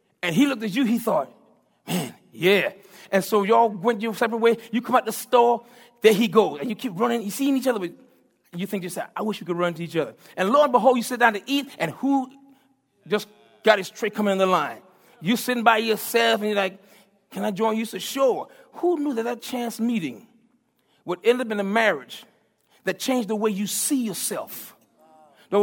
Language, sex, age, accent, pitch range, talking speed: English, male, 40-59, American, 205-265 Hz, 230 wpm